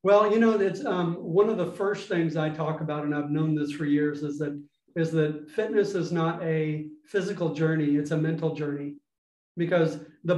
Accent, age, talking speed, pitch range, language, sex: American, 40-59, 200 wpm, 155-195 Hz, English, male